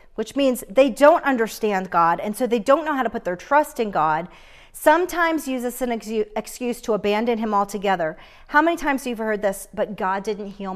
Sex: female